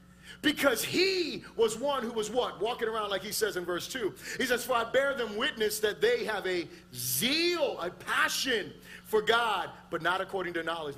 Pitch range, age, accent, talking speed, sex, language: 180-280 Hz, 40-59, American, 195 wpm, male, English